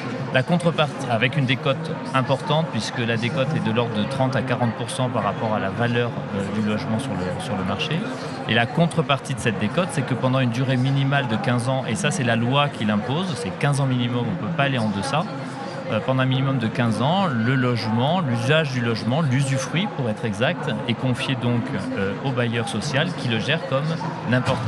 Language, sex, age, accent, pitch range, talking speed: French, male, 40-59, French, 115-150 Hz, 215 wpm